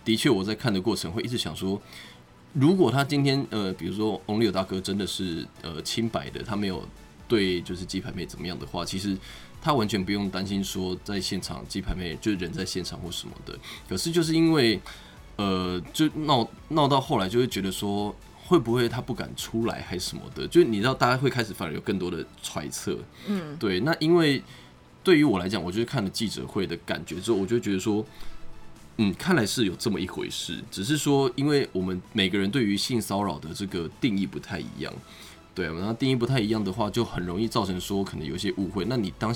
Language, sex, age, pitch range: Chinese, male, 20-39, 90-115 Hz